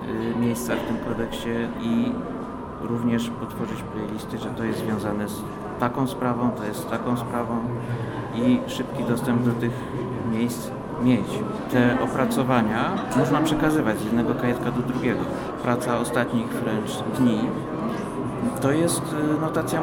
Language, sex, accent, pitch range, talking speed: Polish, male, native, 115-135 Hz, 130 wpm